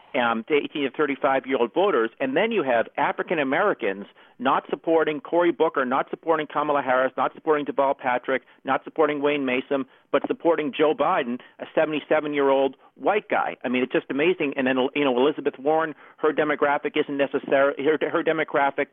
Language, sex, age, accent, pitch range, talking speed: English, male, 40-59, American, 130-155 Hz, 180 wpm